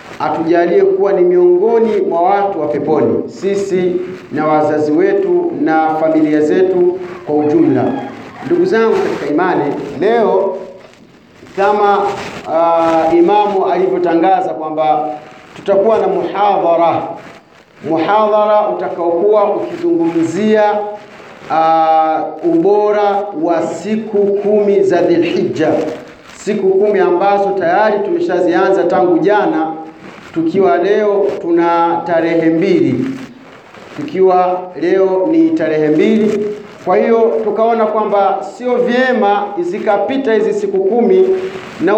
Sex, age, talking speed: male, 50-69, 95 wpm